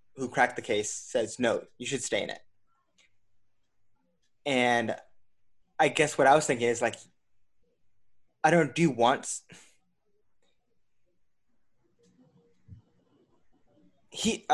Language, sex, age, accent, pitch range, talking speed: English, male, 20-39, American, 115-150 Hz, 100 wpm